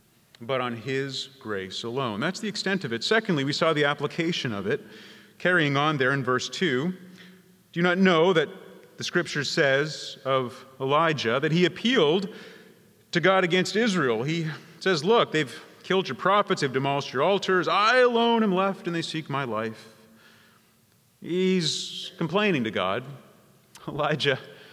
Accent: American